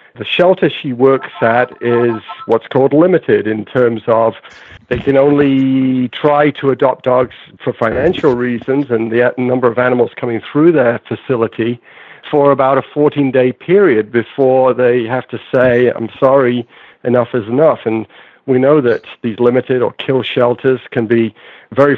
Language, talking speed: English, 160 wpm